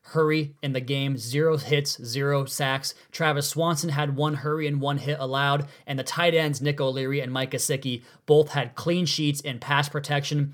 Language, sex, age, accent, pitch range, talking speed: English, male, 20-39, American, 135-155 Hz, 190 wpm